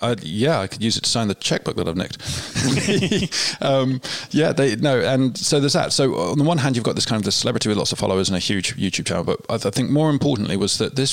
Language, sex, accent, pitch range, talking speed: English, male, British, 100-125 Hz, 280 wpm